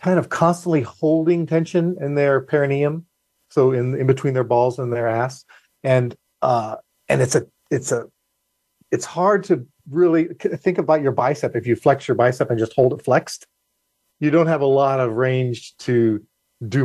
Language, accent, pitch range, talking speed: English, American, 120-160 Hz, 180 wpm